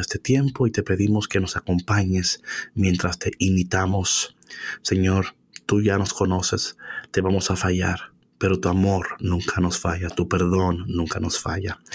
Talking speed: 155 wpm